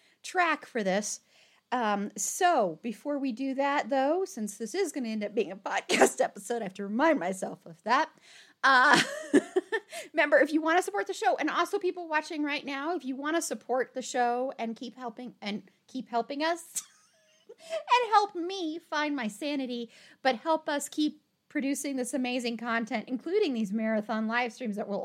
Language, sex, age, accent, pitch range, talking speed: English, female, 40-59, American, 220-285 Hz, 185 wpm